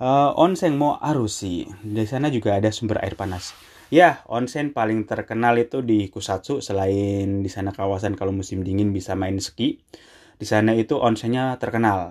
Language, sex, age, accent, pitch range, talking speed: Indonesian, male, 20-39, native, 100-120 Hz, 165 wpm